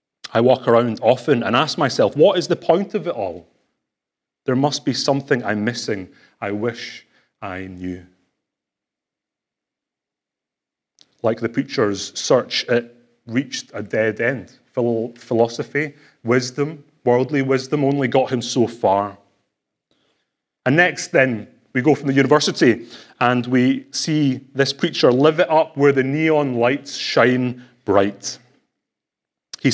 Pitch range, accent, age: 120-155 Hz, British, 30-49